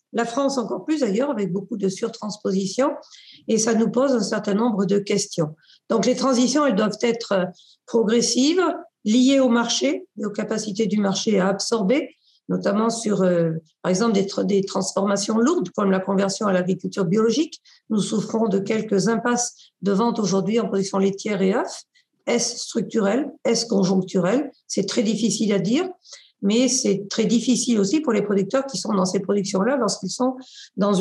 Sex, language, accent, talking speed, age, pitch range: female, French, French, 170 wpm, 50-69, 200-250 Hz